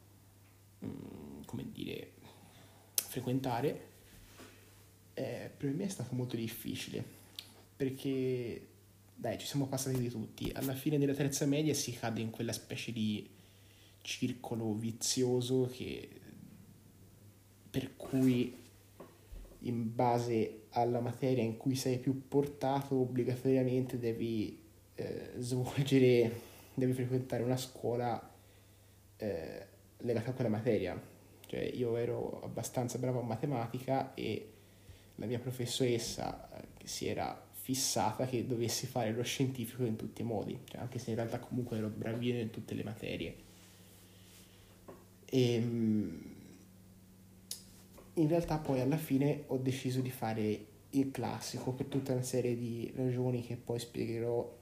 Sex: male